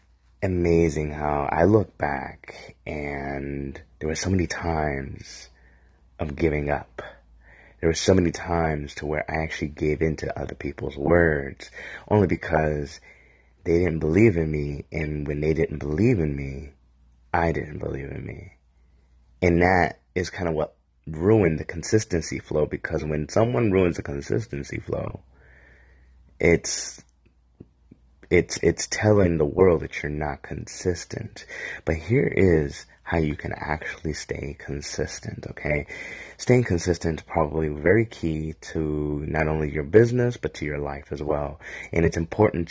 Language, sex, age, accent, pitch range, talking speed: English, male, 30-49, American, 75-85 Hz, 145 wpm